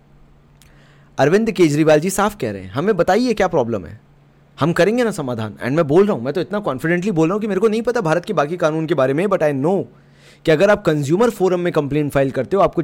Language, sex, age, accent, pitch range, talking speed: Hindi, male, 30-49, native, 135-180 Hz, 250 wpm